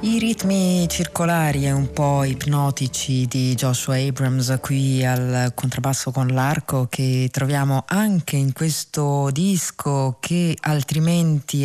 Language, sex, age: Italian, female, 30-49